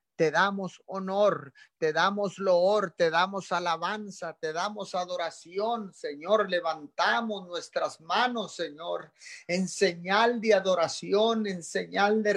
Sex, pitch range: male, 180-215 Hz